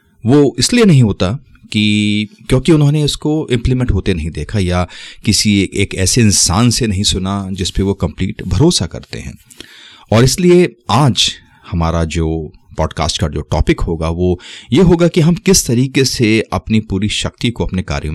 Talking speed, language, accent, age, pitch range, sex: 170 wpm, Hindi, native, 30-49, 85-110 Hz, male